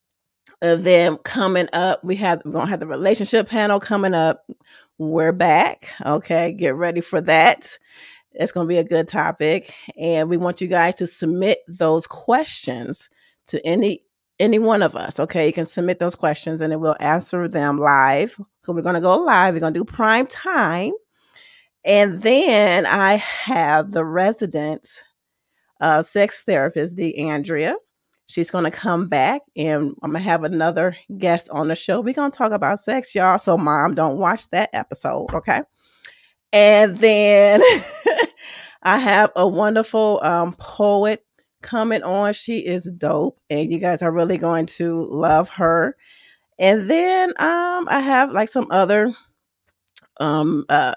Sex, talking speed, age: female, 160 wpm, 30-49